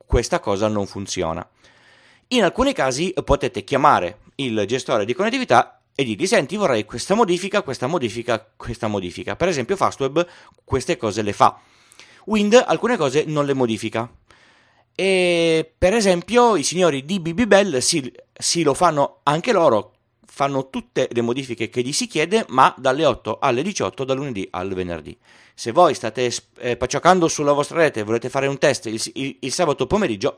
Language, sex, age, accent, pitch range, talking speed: Italian, male, 30-49, native, 110-170 Hz, 165 wpm